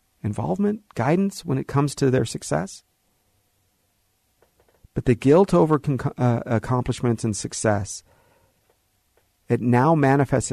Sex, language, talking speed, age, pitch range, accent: male, English, 110 wpm, 50-69, 105-155 Hz, American